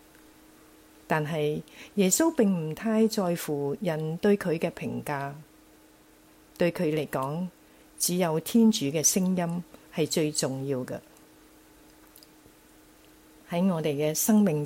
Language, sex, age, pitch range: Chinese, female, 40-59, 150-215 Hz